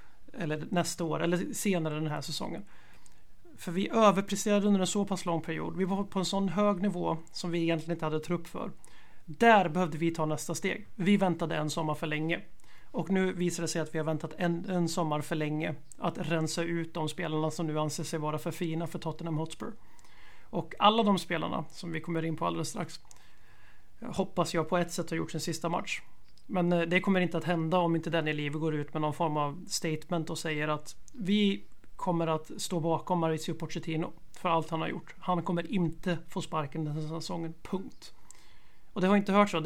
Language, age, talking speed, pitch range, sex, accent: Swedish, 30-49, 210 wpm, 160-185 Hz, male, native